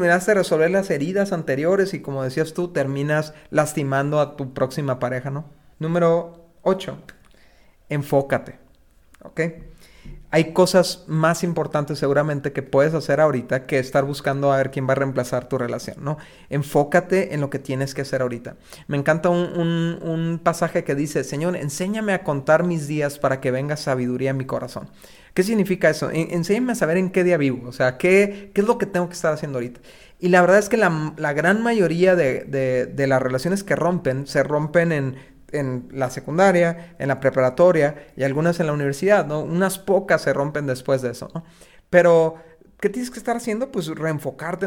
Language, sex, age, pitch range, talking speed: Spanish, male, 40-59, 135-175 Hz, 185 wpm